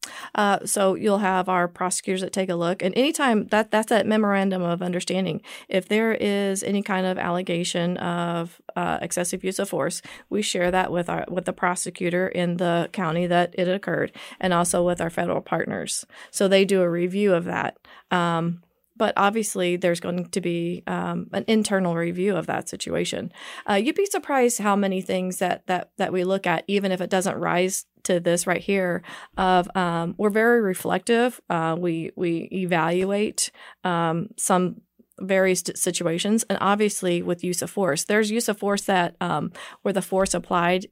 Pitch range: 175-200 Hz